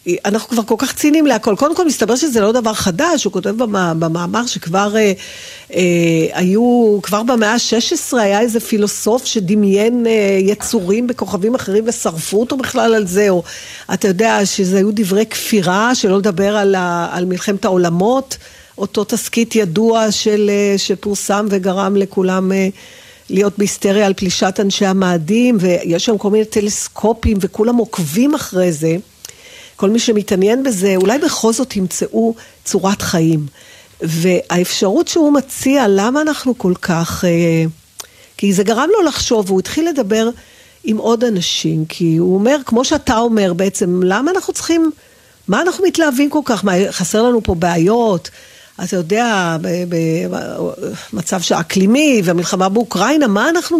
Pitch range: 190-240 Hz